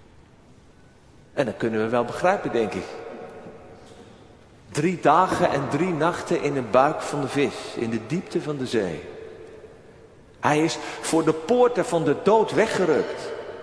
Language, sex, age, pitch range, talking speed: Dutch, male, 40-59, 135-190 Hz, 150 wpm